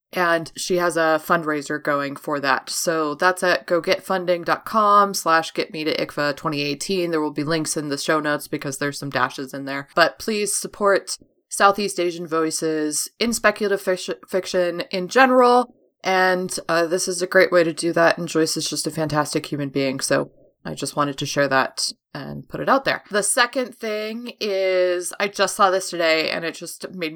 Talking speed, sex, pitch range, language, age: 185 wpm, female, 160-195 Hz, English, 20-39